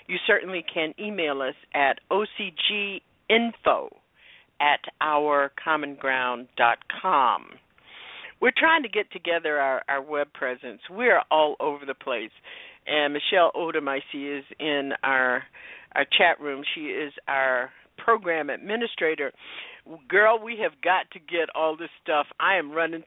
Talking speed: 140 wpm